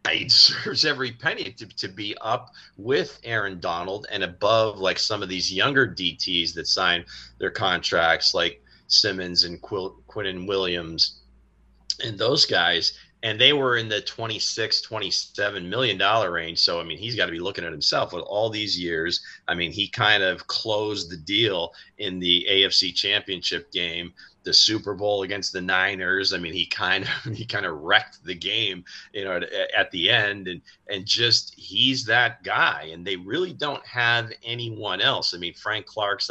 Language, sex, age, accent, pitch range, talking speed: English, male, 30-49, American, 90-110 Hz, 175 wpm